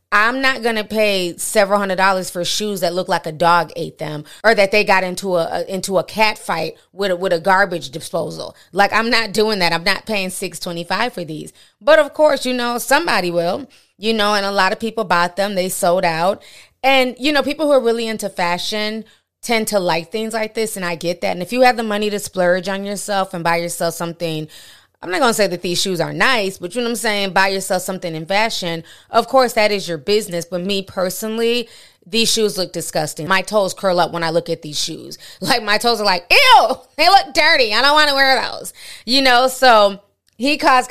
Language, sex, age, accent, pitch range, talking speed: English, female, 20-39, American, 175-225 Hz, 240 wpm